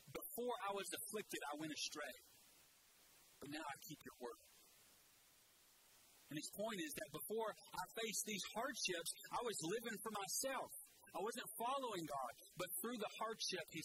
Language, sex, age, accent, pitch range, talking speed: English, male, 40-59, American, 155-200 Hz, 160 wpm